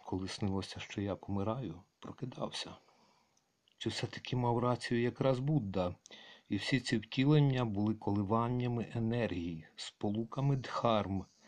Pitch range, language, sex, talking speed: 100-135 Hz, Ukrainian, male, 110 wpm